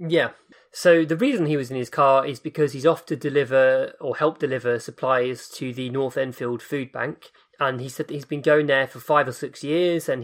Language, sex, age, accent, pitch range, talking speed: English, male, 20-39, British, 125-150 Hz, 230 wpm